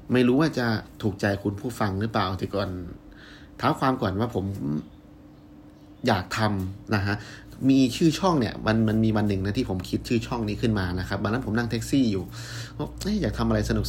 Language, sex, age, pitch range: Thai, male, 30-49, 95-125 Hz